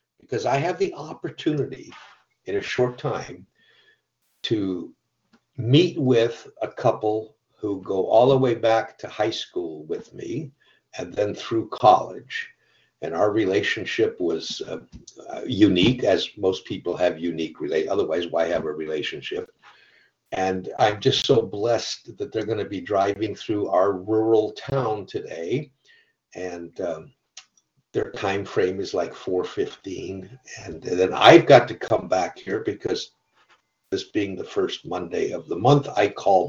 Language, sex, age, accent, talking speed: English, male, 60-79, American, 150 wpm